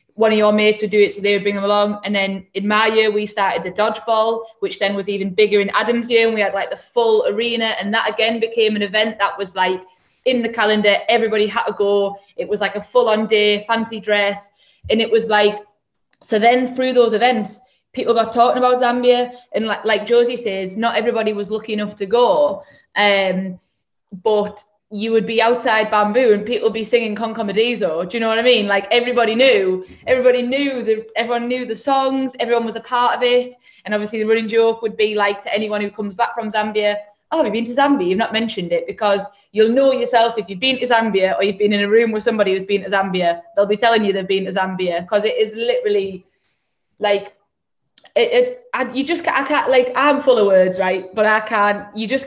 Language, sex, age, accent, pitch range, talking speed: English, female, 20-39, British, 205-240 Hz, 230 wpm